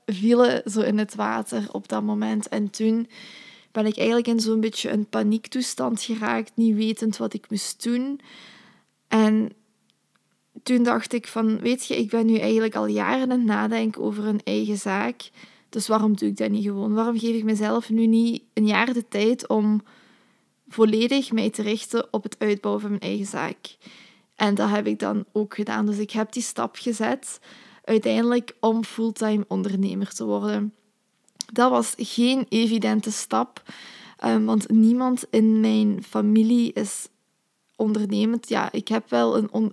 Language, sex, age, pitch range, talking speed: Dutch, female, 20-39, 210-235 Hz, 170 wpm